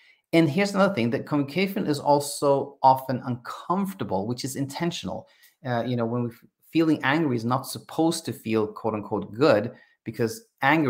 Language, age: English, 30-49